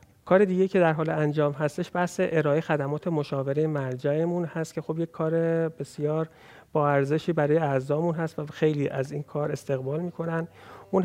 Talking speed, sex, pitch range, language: 170 wpm, male, 140-165 Hz, Persian